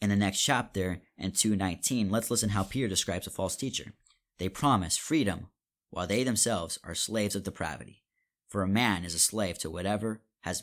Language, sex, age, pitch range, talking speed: English, male, 30-49, 95-115 Hz, 185 wpm